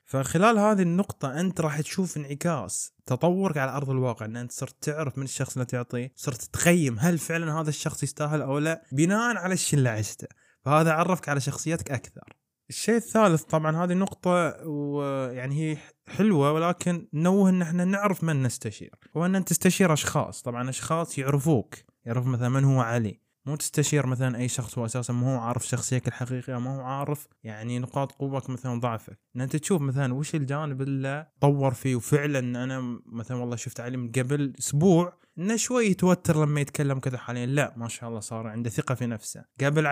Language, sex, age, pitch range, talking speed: Arabic, male, 20-39, 125-160 Hz, 175 wpm